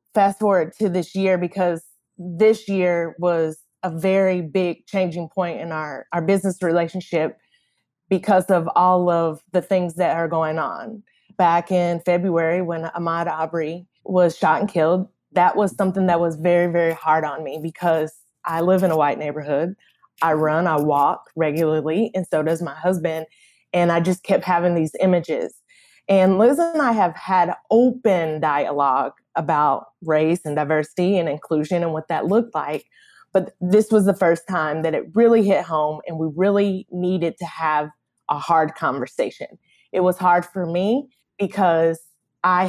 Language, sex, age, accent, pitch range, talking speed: English, female, 20-39, American, 160-190 Hz, 165 wpm